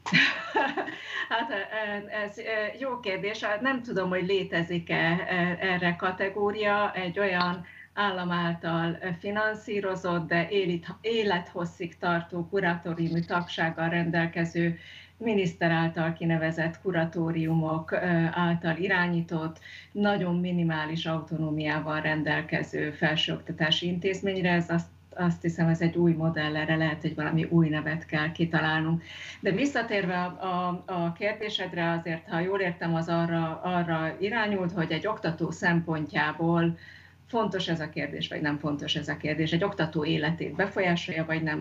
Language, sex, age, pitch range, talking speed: Hungarian, female, 30-49, 160-190 Hz, 120 wpm